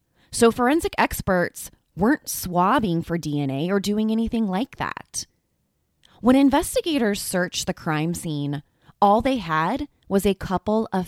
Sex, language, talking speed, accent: female, English, 135 wpm, American